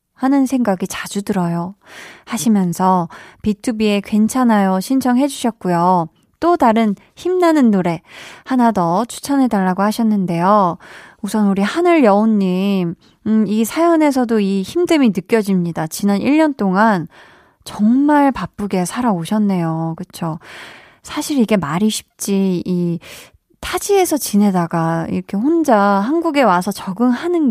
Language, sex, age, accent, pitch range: Korean, female, 20-39, native, 190-255 Hz